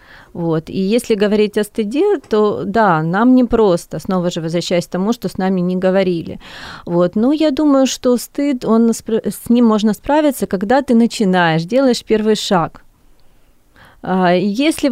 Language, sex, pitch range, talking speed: Ukrainian, female, 185-240 Hz, 155 wpm